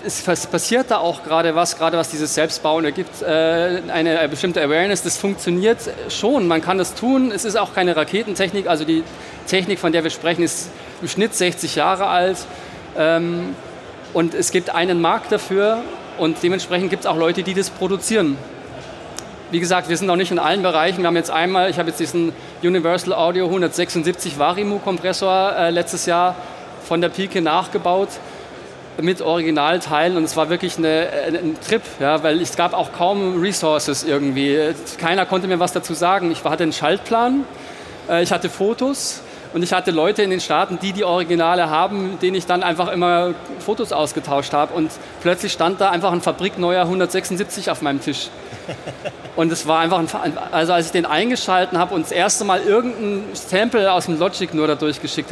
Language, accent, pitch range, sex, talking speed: German, German, 165-190 Hz, male, 180 wpm